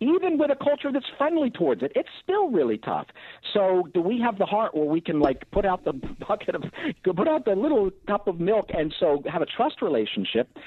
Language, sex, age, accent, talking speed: English, male, 50-69, American, 225 wpm